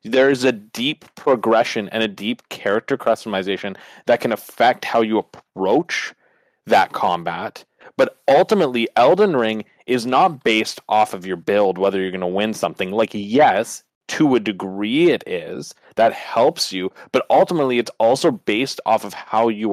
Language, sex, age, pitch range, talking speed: English, male, 30-49, 105-125 Hz, 165 wpm